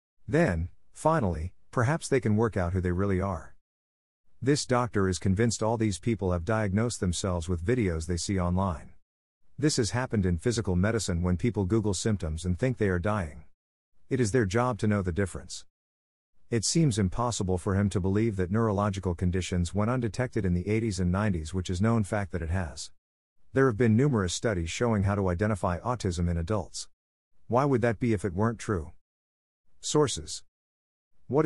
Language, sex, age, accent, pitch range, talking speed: English, male, 50-69, American, 90-115 Hz, 180 wpm